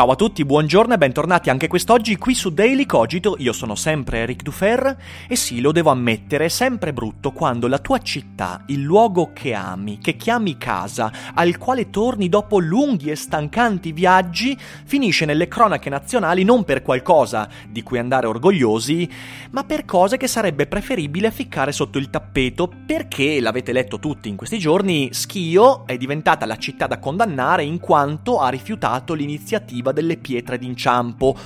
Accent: native